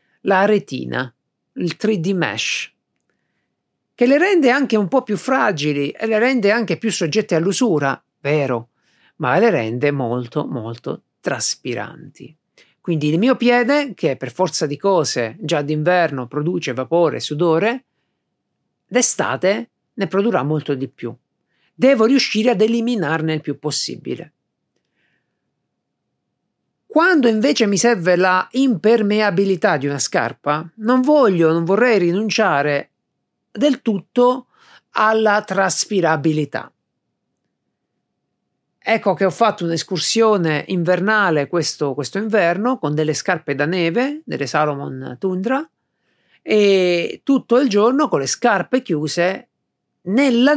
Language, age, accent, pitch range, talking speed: Italian, 50-69, native, 150-230 Hz, 115 wpm